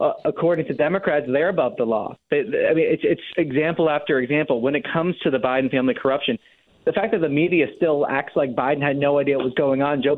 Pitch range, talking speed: 135-185 Hz, 230 wpm